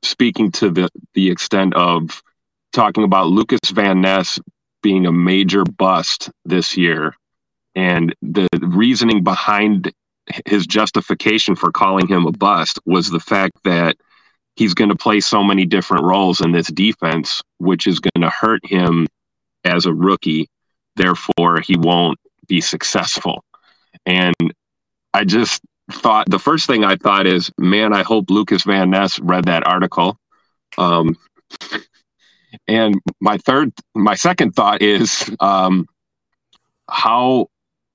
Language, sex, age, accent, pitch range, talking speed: English, male, 30-49, American, 90-100 Hz, 135 wpm